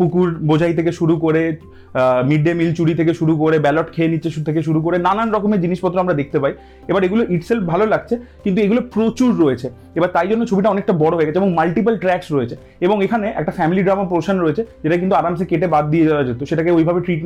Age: 30-49